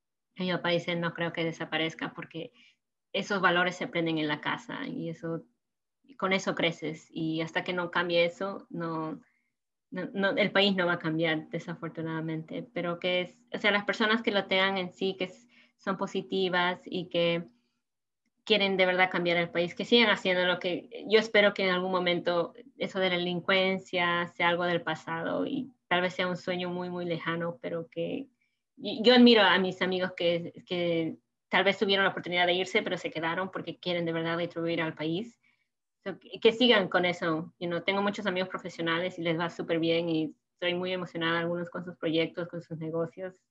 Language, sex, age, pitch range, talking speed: English, female, 20-39, 170-200 Hz, 195 wpm